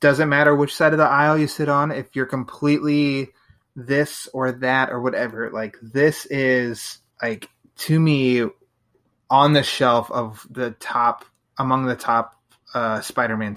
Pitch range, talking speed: 120-135 Hz, 155 wpm